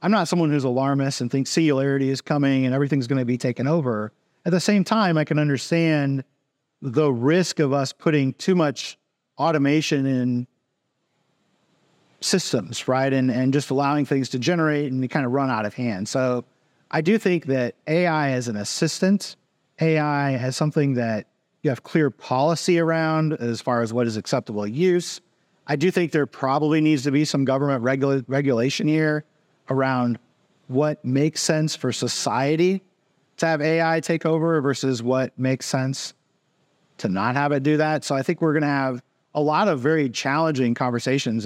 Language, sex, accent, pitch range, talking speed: English, male, American, 125-160 Hz, 175 wpm